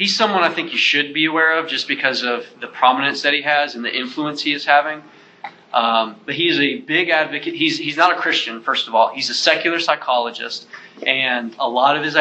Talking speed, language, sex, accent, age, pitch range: 225 wpm, English, male, American, 20-39, 140-185 Hz